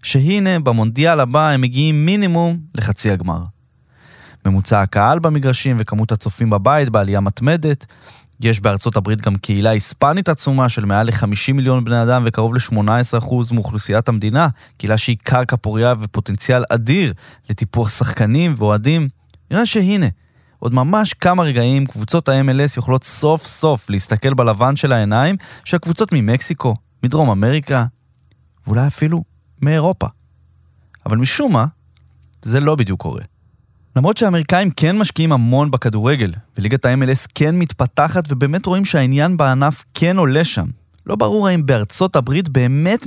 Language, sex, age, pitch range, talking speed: Hebrew, male, 20-39, 110-150 Hz, 130 wpm